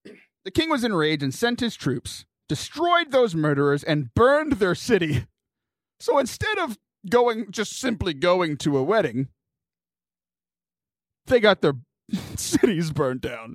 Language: English